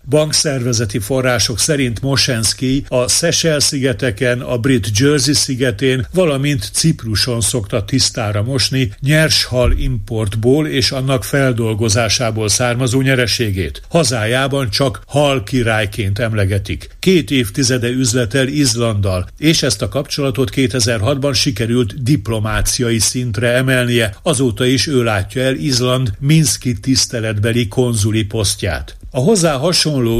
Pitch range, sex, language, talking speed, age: 115-140 Hz, male, Hungarian, 105 wpm, 60-79